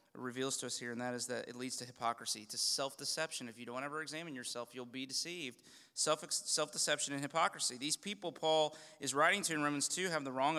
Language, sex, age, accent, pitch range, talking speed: English, male, 30-49, American, 125-165 Hz, 225 wpm